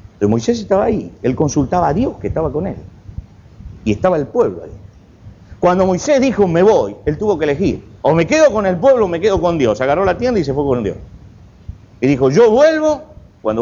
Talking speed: 220 wpm